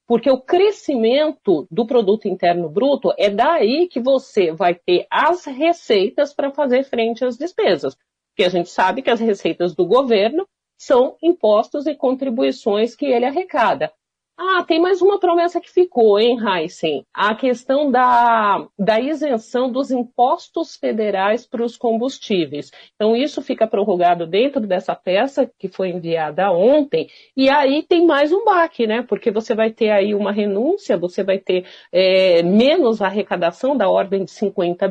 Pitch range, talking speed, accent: 200-275 Hz, 155 wpm, Brazilian